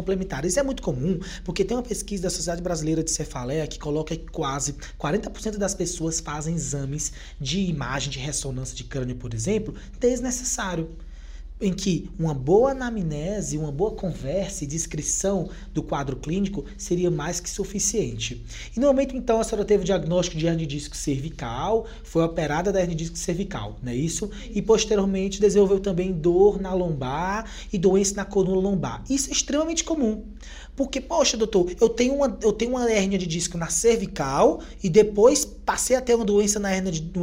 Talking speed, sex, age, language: 175 wpm, male, 20-39, Portuguese